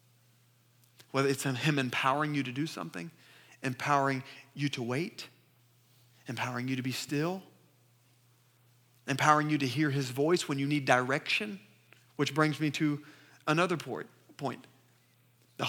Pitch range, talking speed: 130-195 Hz, 140 wpm